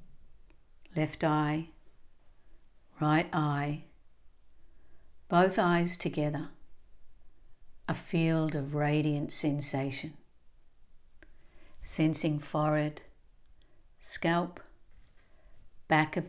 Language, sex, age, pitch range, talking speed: English, female, 60-79, 140-165 Hz, 65 wpm